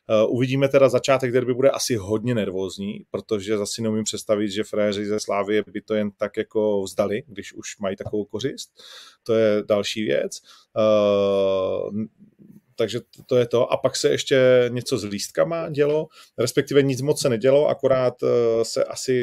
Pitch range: 105-125 Hz